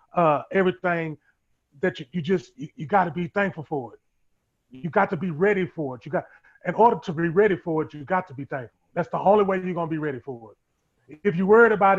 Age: 30-49